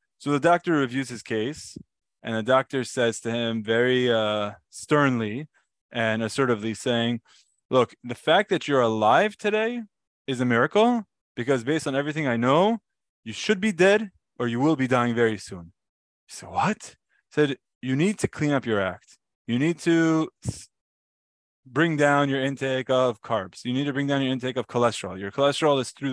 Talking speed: 175 wpm